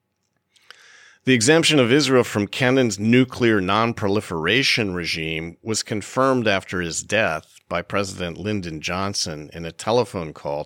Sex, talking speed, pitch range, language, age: male, 125 wpm, 85-125 Hz, English, 50-69